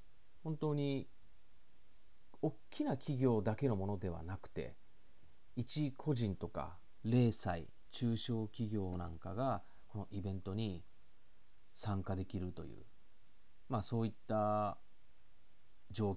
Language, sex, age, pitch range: Japanese, male, 40-59, 90-135 Hz